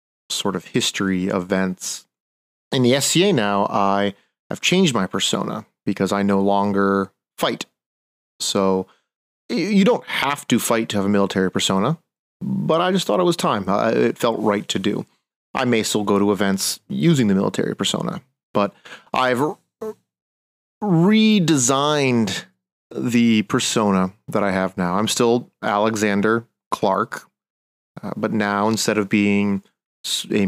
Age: 30-49